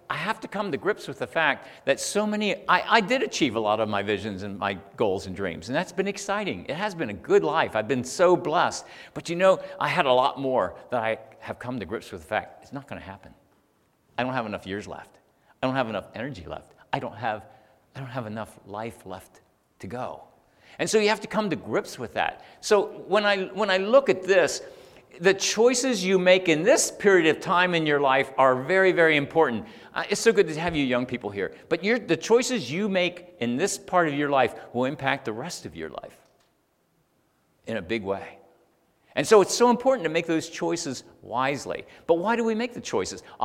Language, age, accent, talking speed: English, 50-69, American, 230 wpm